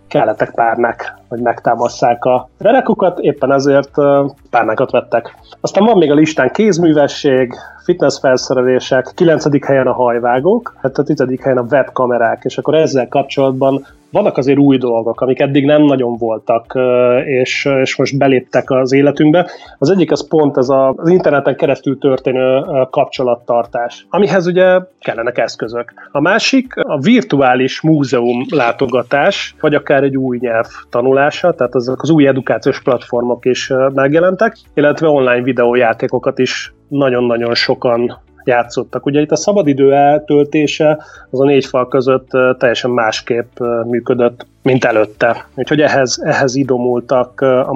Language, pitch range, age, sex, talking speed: Hungarian, 125-150 Hz, 30-49, male, 135 wpm